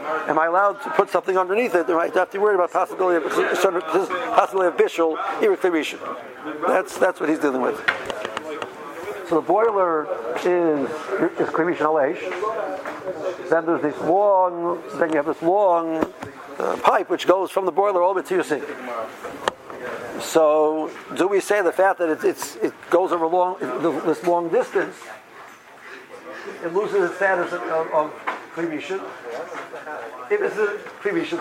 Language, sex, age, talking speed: English, male, 60-79, 155 wpm